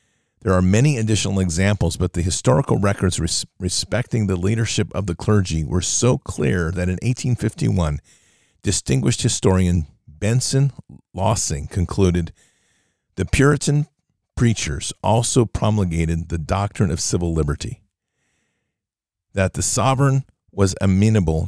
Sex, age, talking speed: male, 50-69, 115 wpm